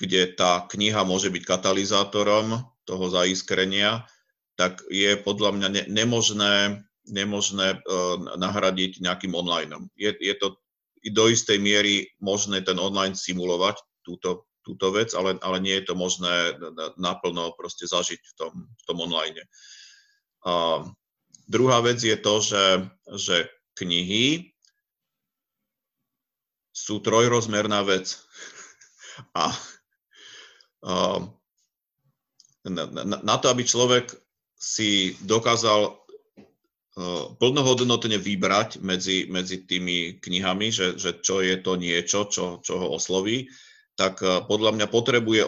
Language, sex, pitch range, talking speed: Slovak, male, 95-110 Hz, 105 wpm